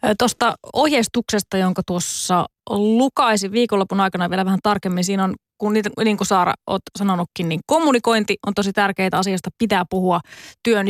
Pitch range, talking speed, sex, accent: 185-230 Hz, 150 wpm, female, native